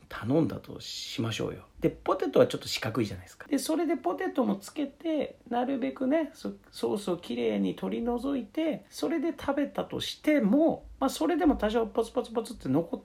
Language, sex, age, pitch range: Japanese, male, 40-59, 225-280 Hz